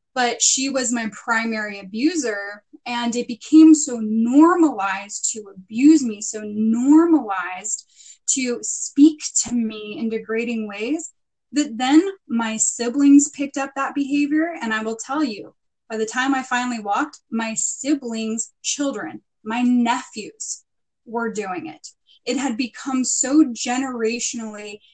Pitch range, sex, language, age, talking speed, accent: 220-275 Hz, female, English, 10-29, 130 wpm, American